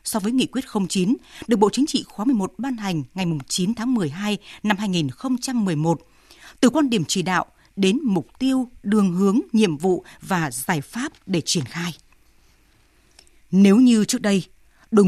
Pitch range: 180-250 Hz